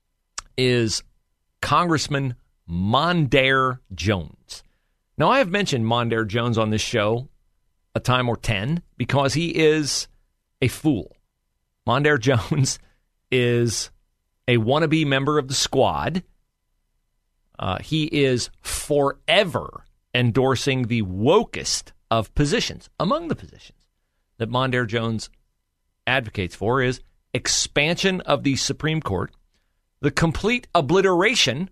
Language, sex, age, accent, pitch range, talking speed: English, male, 40-59, American, 105-150 Hz, 110 wpm